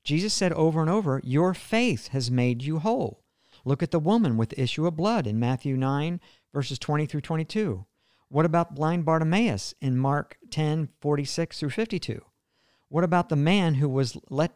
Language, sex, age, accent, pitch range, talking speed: English, male, 50-69, American, 130-175 Hz, 175 wpm